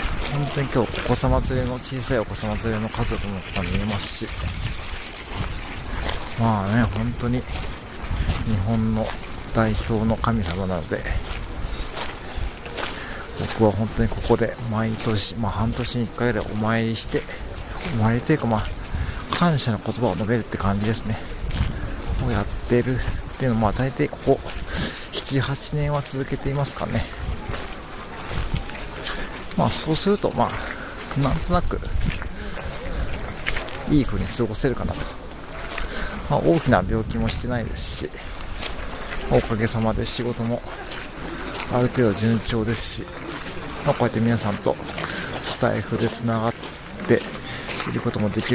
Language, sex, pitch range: Japanese, male, 105-120 Hz